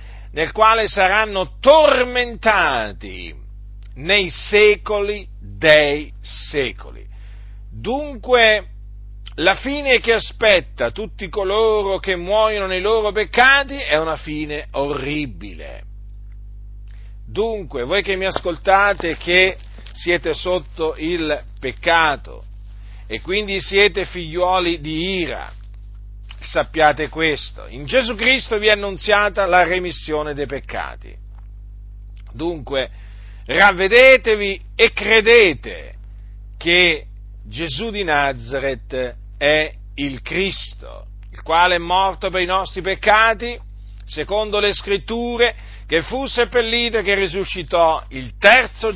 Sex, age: male, 50-69